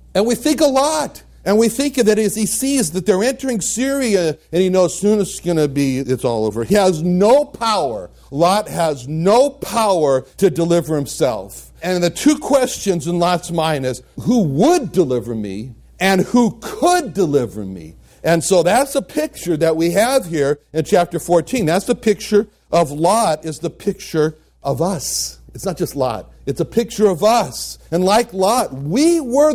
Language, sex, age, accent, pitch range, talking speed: English, male, 60-79, American, 150-225 Hz, 185 wpm